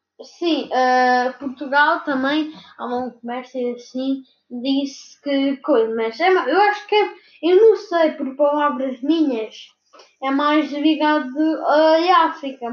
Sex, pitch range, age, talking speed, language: female, 240-300 Hz, 10-29, 120 wpm, Portuguese